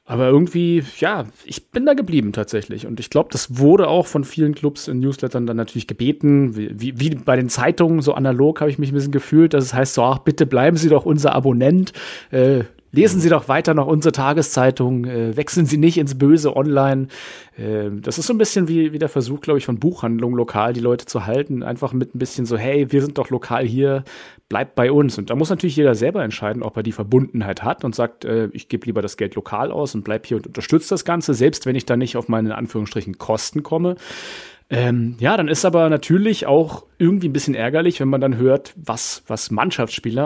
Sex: male